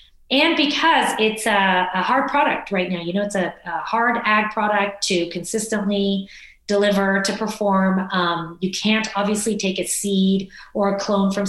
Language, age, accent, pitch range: English, 30-49, American, 180-210 Hz